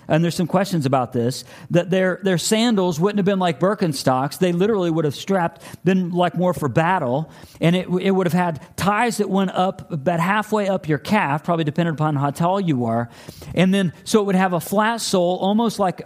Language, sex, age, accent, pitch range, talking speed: English, male, 50-69, American, 160-200 Hz, 215 wpm